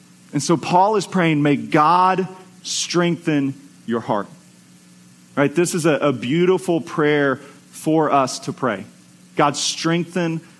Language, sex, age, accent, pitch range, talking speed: English, male, 40-59, American, 135-190 Hz, 130 wpm